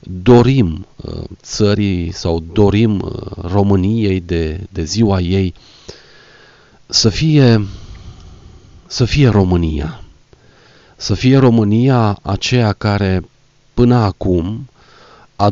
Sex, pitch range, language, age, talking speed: male, 90-120 Hz, Romanian, 40-59, 80 wpm